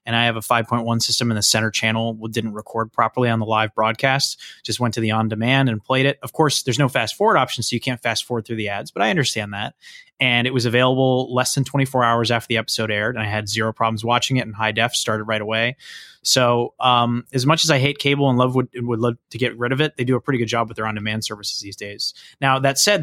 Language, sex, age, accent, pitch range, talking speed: English, male, 20-39, American, 115-135 Hz, 260 wpm